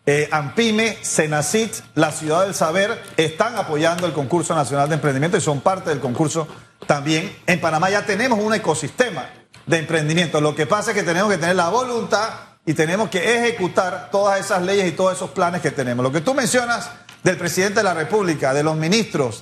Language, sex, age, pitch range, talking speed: Spanish, male, 40-59, 160-220 Hz, 195 wpm